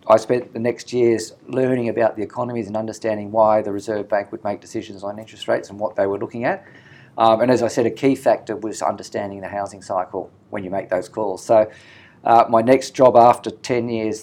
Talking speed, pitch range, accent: 225 wpm, 100-115 Hz, Australian